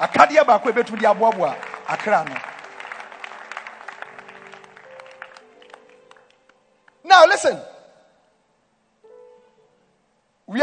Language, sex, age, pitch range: English, male, 50-69, 180-275 Hz